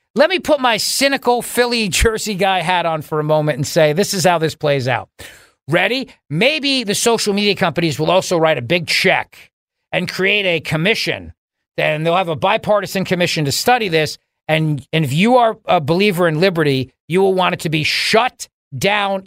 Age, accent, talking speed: 40-59, American, 195 wpm